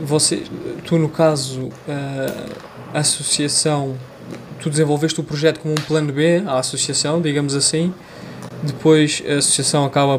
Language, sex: Portuguese, male